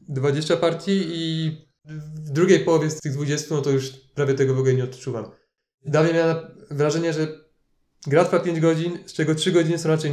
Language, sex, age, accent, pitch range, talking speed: Polish, male, 20-39, native, 140-165 Hz, 185 wpm